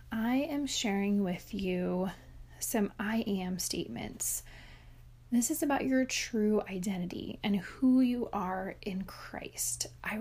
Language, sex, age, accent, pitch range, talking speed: English, female, 30-49, American, 190-235 Hz, 130 wpm